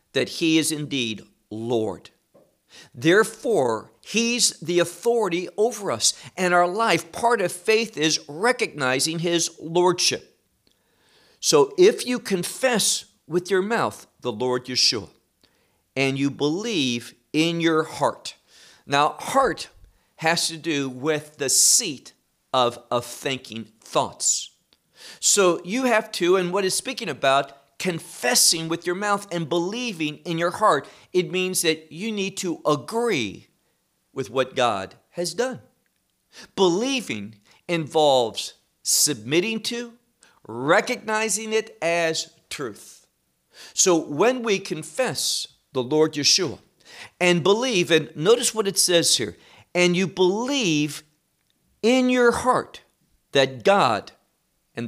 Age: 50-69